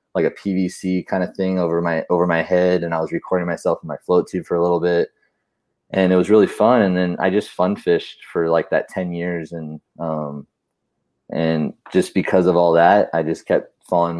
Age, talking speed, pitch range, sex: 20-39, 220 wpm, 85-95 Hz, male